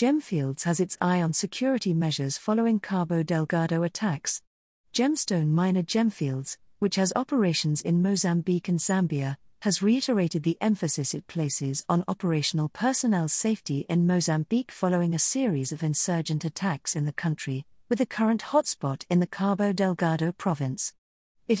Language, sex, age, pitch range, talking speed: English, female, 50-69, 160-215 Hz, 145 wpm